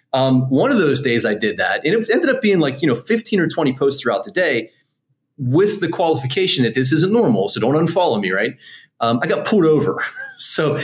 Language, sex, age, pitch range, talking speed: English, male, 30-49, 125-195 Hz, 225 wpm